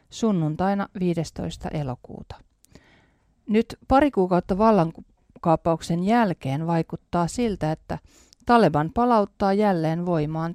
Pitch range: 155-200 Hz